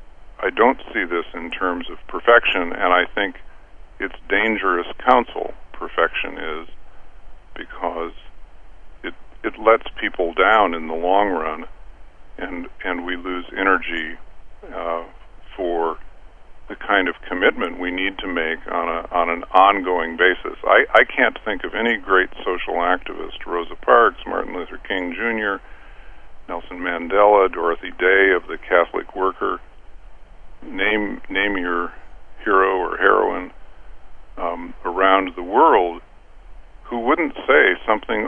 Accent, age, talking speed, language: American, 50-69, 130 wpm, English